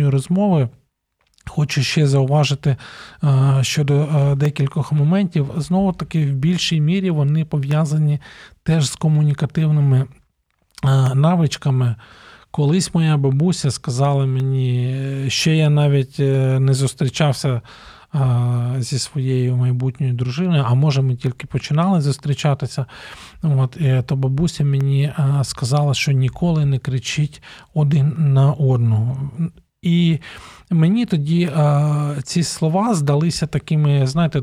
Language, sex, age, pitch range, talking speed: Ukrainian, male, 40-59, 130-150 Hz, 100 wpm